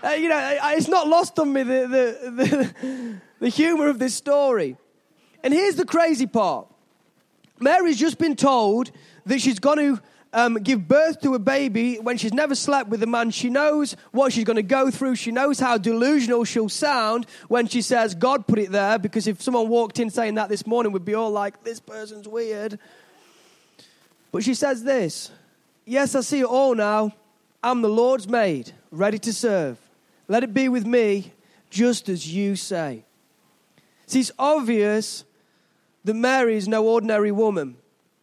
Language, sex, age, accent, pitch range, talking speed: English, male, 20-39, British, 205-260 Hz, 175 wpm